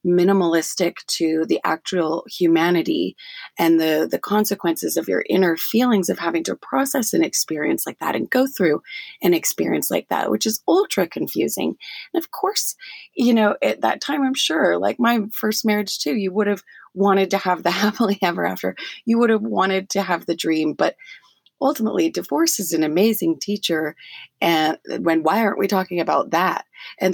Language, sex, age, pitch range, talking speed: English, female, 30-49, 165-225 Hz, 180 wpm